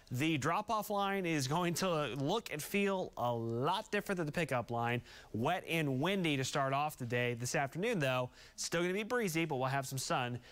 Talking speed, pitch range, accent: 210 wpm, 125-165 Hz, American